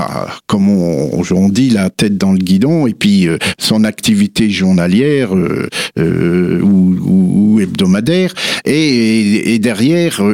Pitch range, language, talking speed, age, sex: 110-165 Hz, French, 140 wpm, 60-79, male